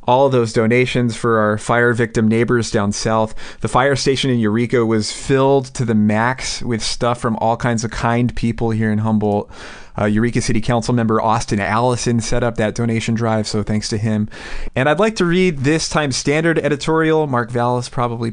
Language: English